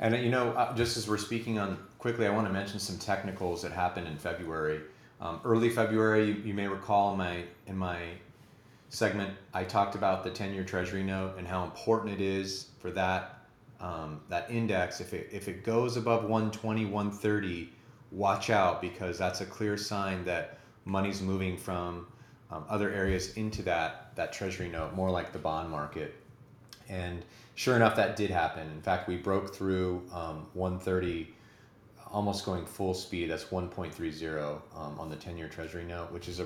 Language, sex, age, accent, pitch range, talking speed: English, male, 30-49, American, 90-110 Hz, 175 wpm